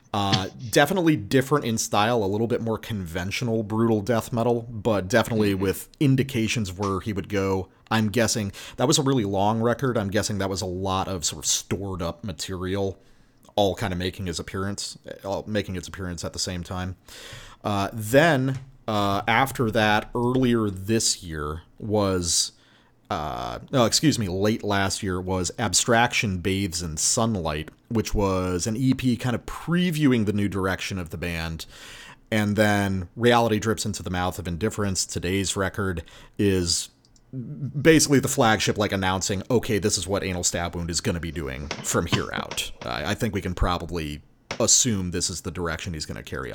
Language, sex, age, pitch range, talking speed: English, male, 40-59, 95-115 Hz, 170 wpm